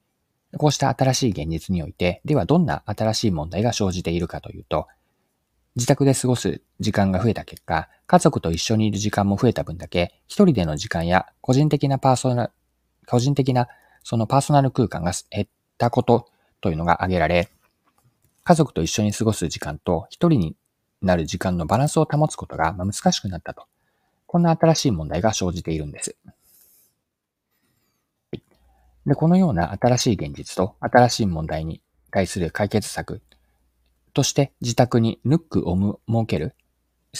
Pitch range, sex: 85-130 Hz, male